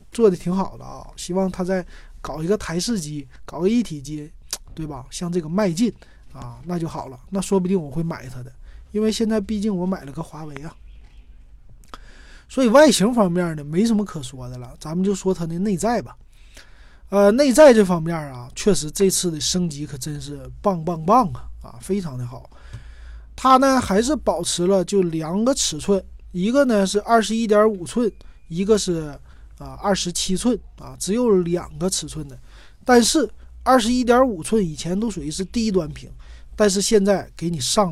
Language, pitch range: Chinese, 150-210 Hz